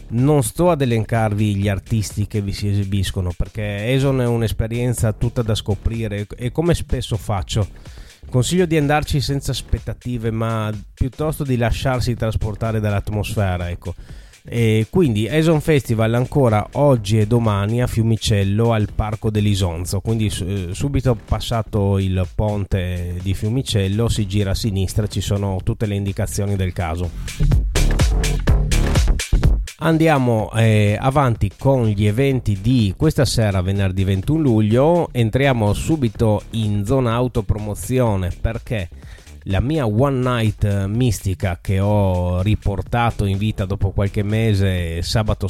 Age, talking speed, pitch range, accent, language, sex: 30-49, 125 wpm, 100-125 Hz, native, Italian, male